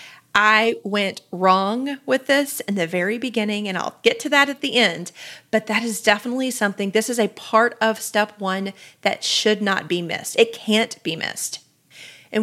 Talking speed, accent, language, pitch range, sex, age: 190 wpm, American, English, 185-240 Hz, female, 30-49